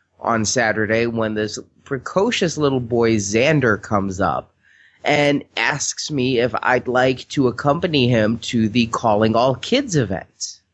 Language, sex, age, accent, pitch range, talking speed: English, male, 30-49, American, 125-195 Hz, 140 wpm